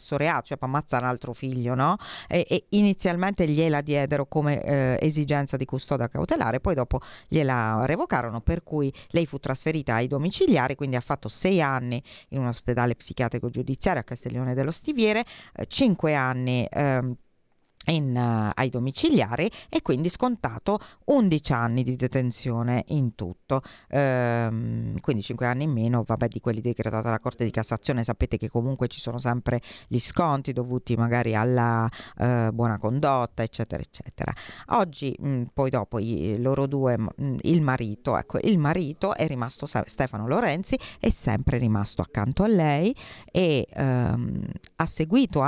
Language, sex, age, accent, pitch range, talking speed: Italian, female, 40-59, native, 120-150 Hz, 155 wpm